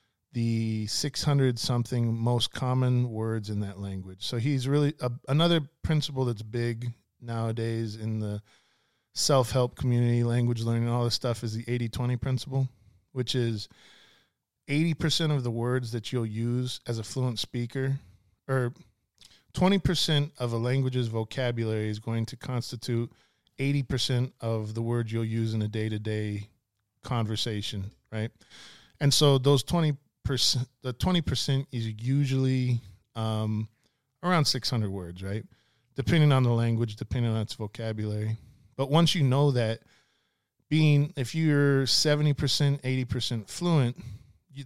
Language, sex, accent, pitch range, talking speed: English, male, American, 110-135 Hz, 130 wpm